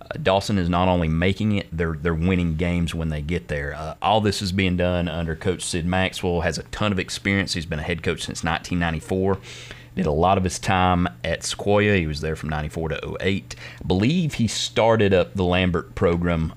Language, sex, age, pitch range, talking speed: English, male, 30-49, 80-95 Hz, 215 wpm